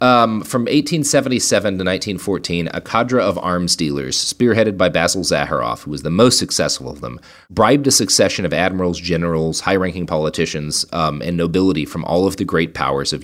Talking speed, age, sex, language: 180 wpm, 30-49, male, English